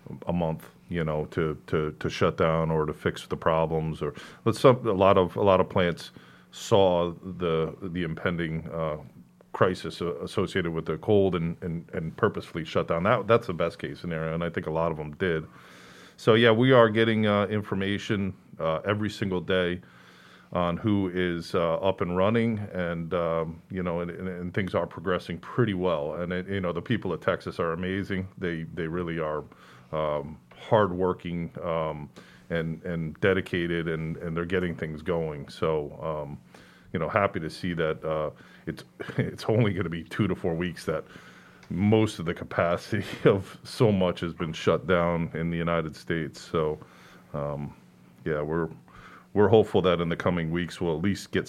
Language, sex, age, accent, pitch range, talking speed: English, male, 40-59, American, 80-95 Hz, 190 wpm